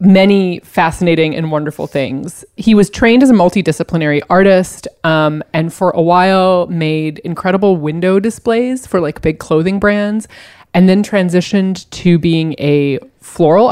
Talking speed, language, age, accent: 145 wpm, English, 20-39, American